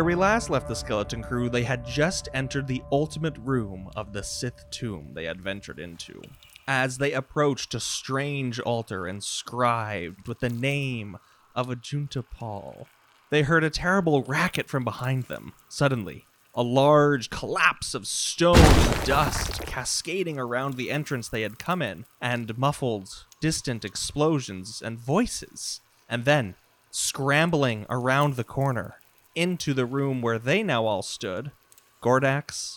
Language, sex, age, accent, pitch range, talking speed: English, male, 20-39, American, 110-145 Hz, 145 wpm